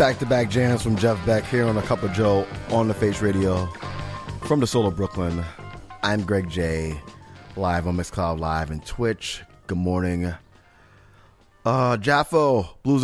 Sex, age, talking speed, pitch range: male, 30-49, 165 wpm, 85-110 Hz